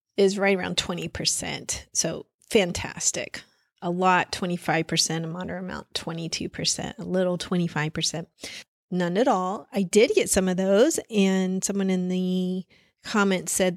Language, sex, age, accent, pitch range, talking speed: English, female, 30-49, American, 185-240 Hz, 135 wpm